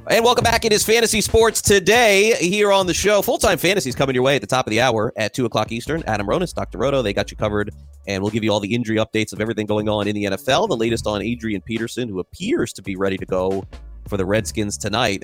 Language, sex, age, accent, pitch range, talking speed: English, male, 30-49, American, 100-140 Hz, 265 wpm